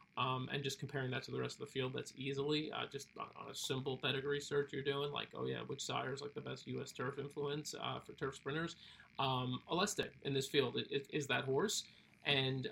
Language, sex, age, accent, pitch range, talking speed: English, male, 30-49, American, 130-145 Hz, 220 wpm